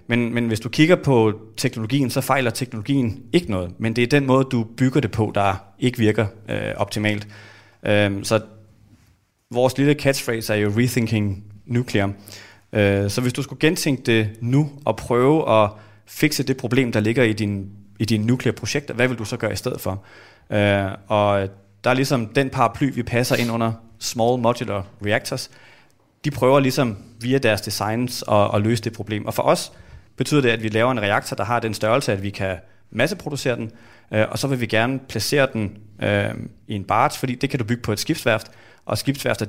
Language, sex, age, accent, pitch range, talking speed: Danish, male, 30-49, native, 105-125 Hz, 195 wpm